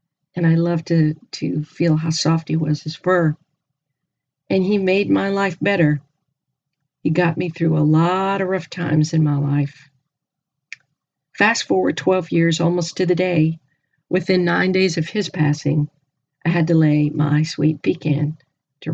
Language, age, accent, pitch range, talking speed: English, 50-69, American, 150-175 Hz, 165 wpm